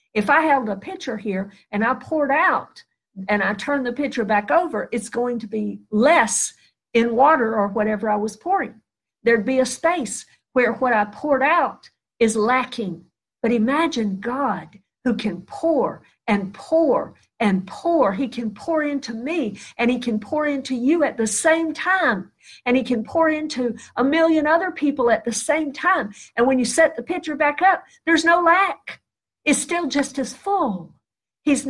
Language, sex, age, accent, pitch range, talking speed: English, female, 50-69, American, 210-295 Hz, 180 wpm